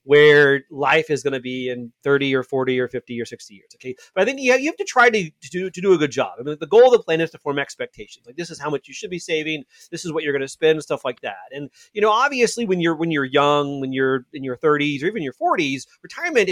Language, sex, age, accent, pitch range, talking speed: English, male, 30-49, American, 140-185 Hz, 300 wpm